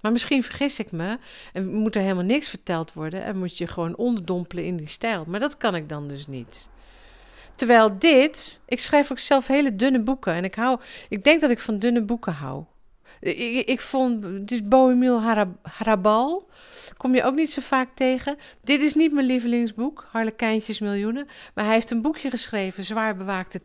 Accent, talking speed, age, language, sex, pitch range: Dutch, 195 wpm, 50-69, Dutch, female, 185-255 Hz